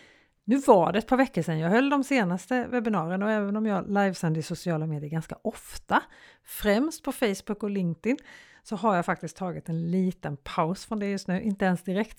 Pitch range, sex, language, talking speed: 175-240 Hz, female, Swedish, 205 wpm